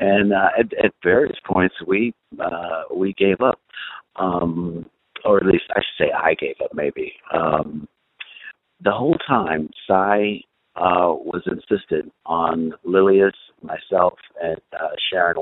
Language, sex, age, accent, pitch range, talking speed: English, male, 50-69, American, 85-130 Hz, 140 wpm